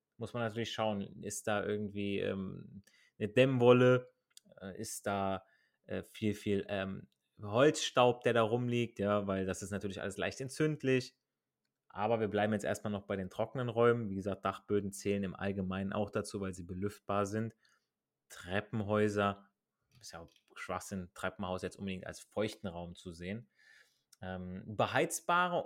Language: German